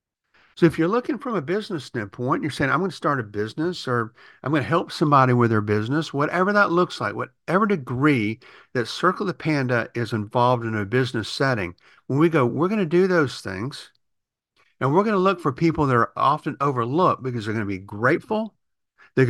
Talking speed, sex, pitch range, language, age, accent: 210 wpm, male, 120-170 Hz, English, 50-69, American